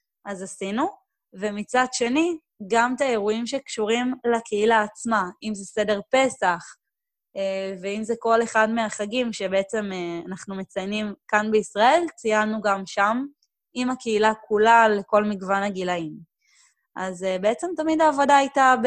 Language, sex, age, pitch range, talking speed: Hebrew, female, 20-39, 195-240 Hz, 120 wpm